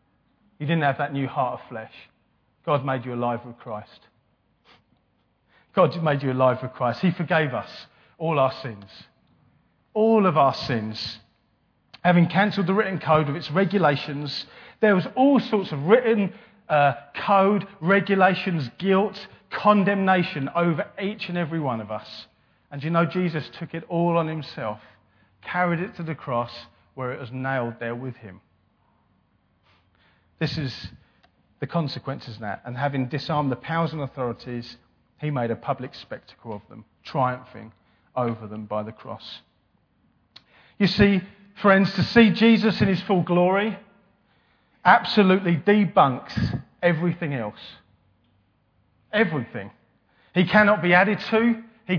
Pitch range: 120-190 Hz